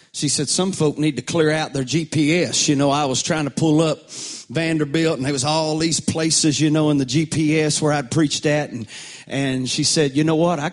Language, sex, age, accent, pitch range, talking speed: English, male, 40-59, American, 135-160 Hz, 235 wpm